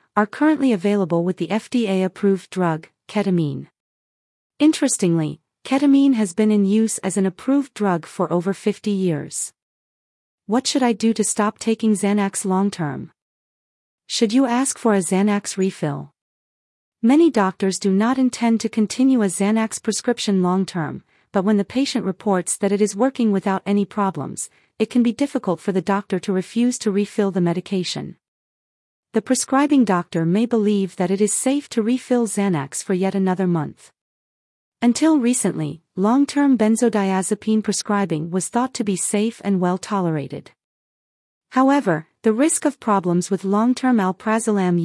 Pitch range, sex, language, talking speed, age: 190-235 Hz, female, English, 150 wpm, 40-59